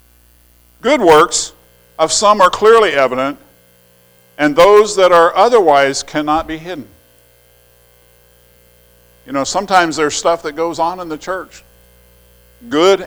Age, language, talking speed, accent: 50-69, English, 125 wpm, American